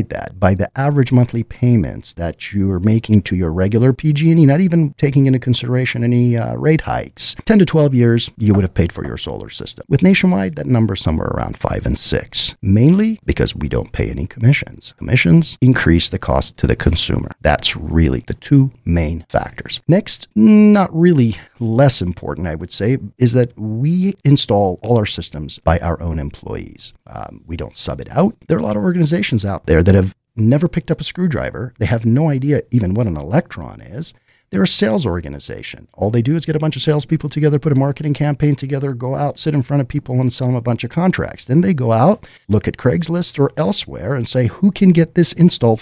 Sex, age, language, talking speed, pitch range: male, 50-69, English, 215 wpm, 95-145 Hz